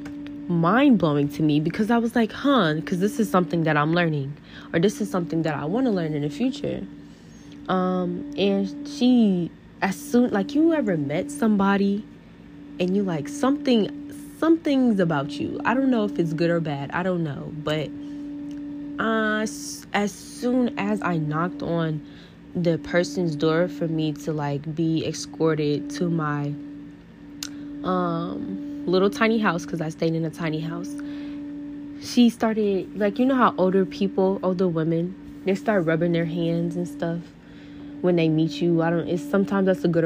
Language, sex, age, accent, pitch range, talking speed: English, female, 10-29, American, 155-220 Hz, 170 wpm